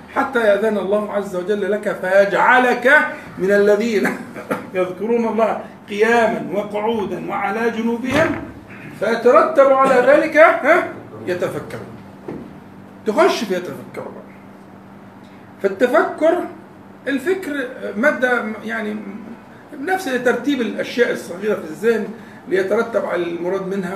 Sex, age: male, 50-69